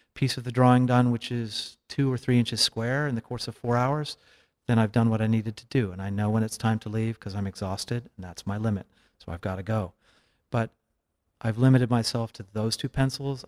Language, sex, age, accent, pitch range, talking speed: English, male, 40-59, American, 110-135 Hz, 240 wpm